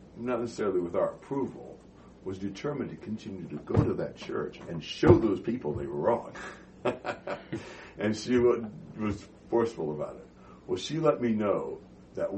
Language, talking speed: English, 160 wpm